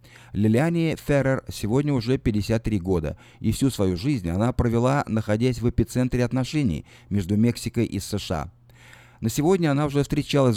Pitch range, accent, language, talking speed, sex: 100-130 Hz, native, Russian, 140 wpm, male